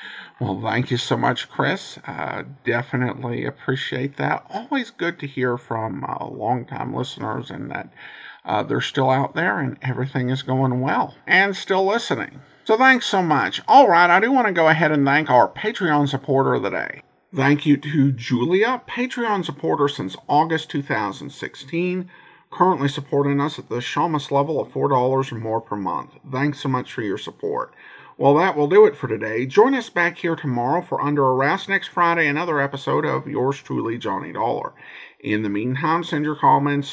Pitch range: 130-165 Hz